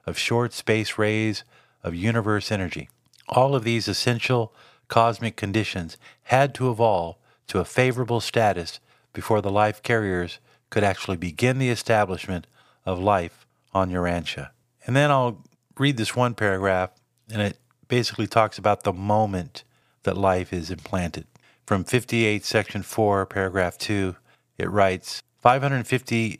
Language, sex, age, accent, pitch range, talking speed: English, male, 50-69, American, 95-115 Hz, 135 wpm